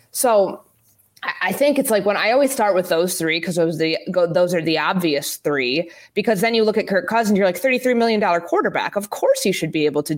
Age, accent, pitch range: 20-39, American, 155-195 Hz